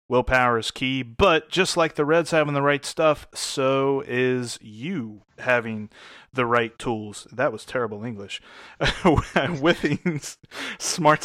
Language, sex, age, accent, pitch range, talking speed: English, male, 30-49, American, 120-150 Hz, 135 wpm